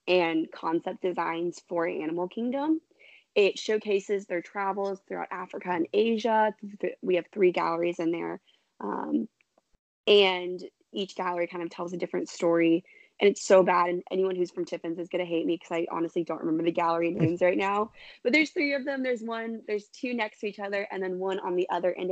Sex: female